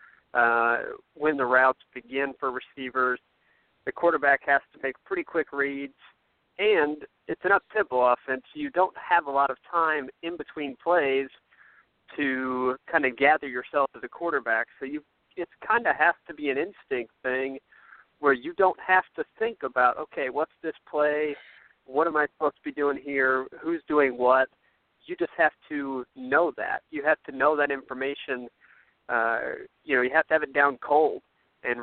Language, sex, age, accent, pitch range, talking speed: English, male, 40-59, American, 130-155 Hz, 175 wpm